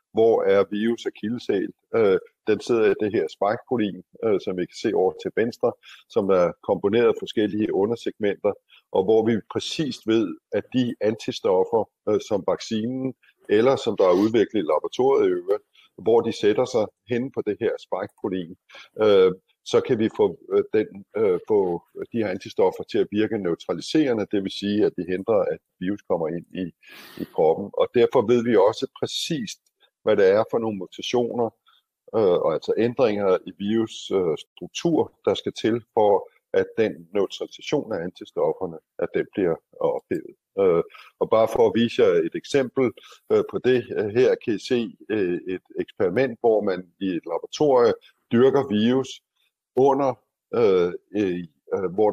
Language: Danish